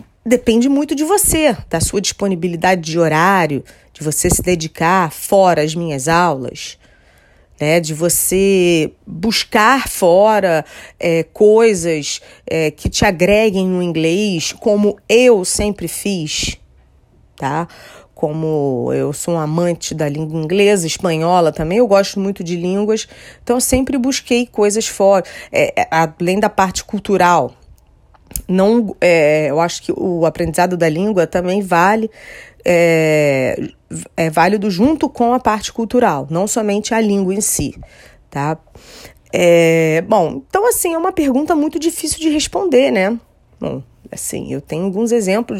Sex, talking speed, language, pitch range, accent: female, 140 wpm, English, 165-225 Hz, Brazilian